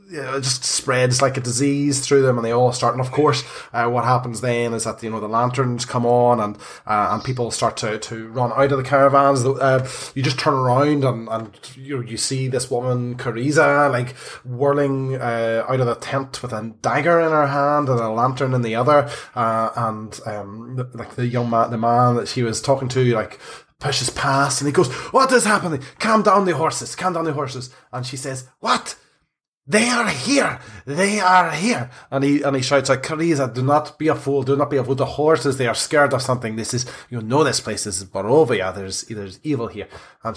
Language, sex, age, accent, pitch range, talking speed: English, male, 20-39, Irish, 120-145 Hz, 220 wpm